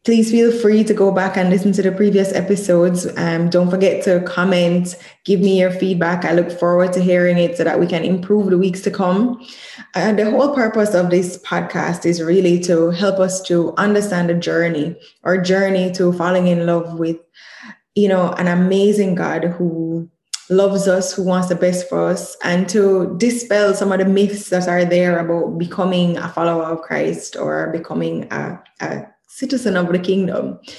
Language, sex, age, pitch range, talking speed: English, female, 10-29, 175-205 Hz, 190 wpm